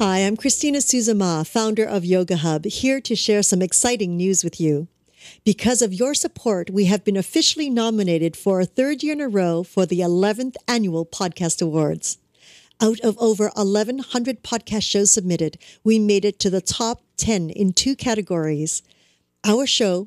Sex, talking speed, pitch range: female, 170 wpm, 175-230 Hz